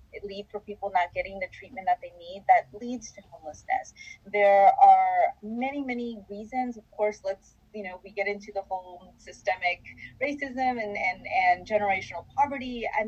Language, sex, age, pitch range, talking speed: English, female, 30-49, 180-255 Hz, 165 wpm